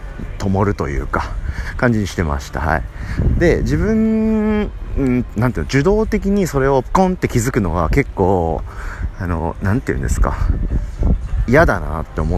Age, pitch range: 40-59, 85-135 Hz